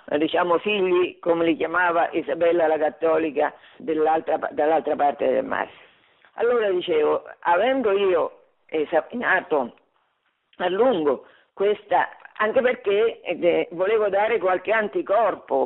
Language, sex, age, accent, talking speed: Italian, female, 50-69, native, 105 wpm